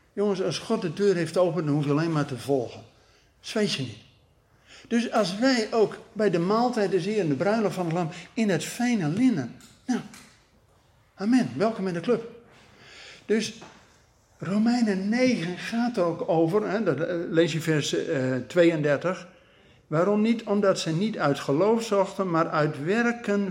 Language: Dutch